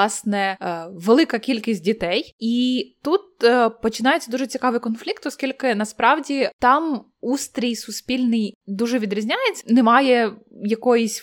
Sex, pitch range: female, 215-260 Hz